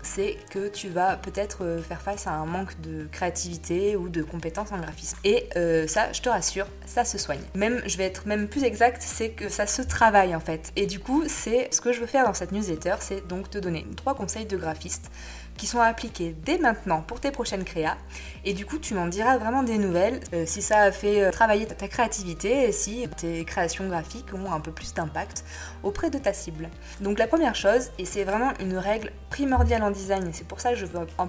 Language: French